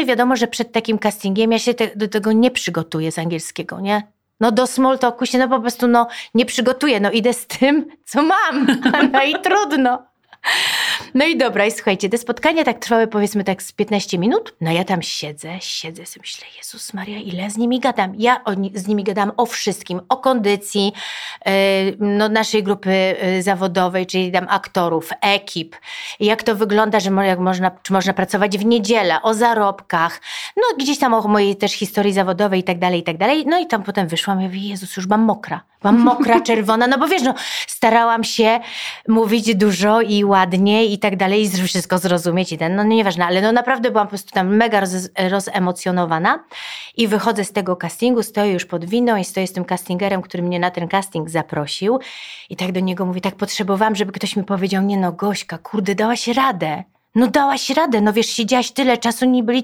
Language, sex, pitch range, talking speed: Polish, female, 185-235 Hz, 200 wpm